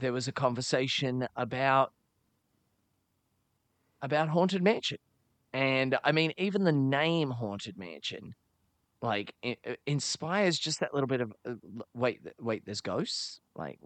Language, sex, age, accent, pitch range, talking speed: English, male, 20-39, Australian, 110-145 Hz, 135 wpm